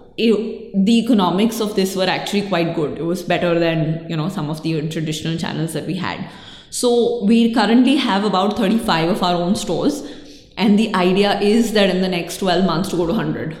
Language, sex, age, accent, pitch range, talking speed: English, female, 20-39, Indian, 170-205 Hz, 205 wpm